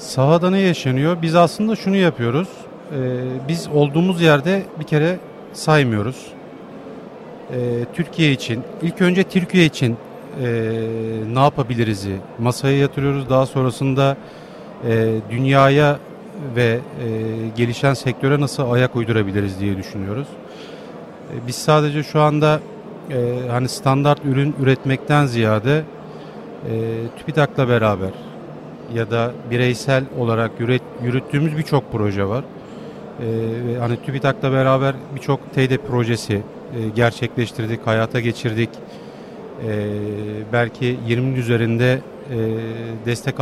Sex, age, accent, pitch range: male, 40-59, native, 115-145 Hz